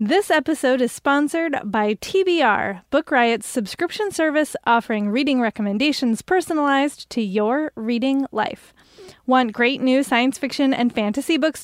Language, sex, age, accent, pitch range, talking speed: English, female, 20-39, American, 230-310 Hz, 135 wpm